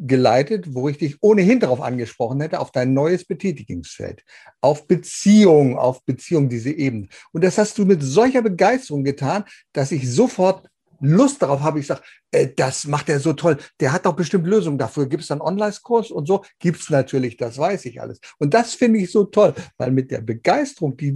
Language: German